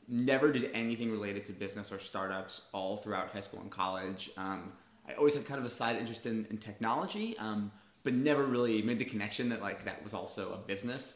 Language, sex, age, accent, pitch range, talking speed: English, male, 20-39, American, 100-115 Hz, 215 wpm